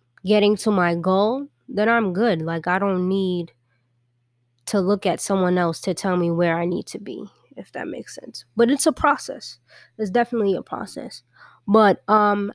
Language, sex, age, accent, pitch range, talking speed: English, female, 20-39, American, 175-215 Hz, 180 wpm